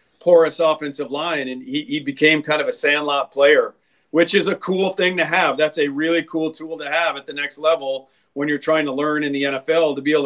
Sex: male